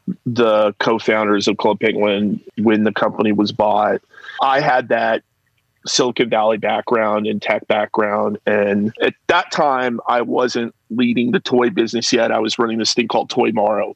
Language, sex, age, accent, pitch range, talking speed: English, male, 30-49, American, 110-125 Hz, 165 wpm